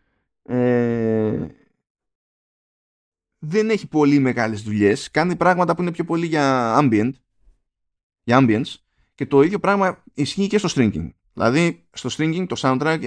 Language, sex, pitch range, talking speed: Greek, male, 110-160 Hz, 135 wpm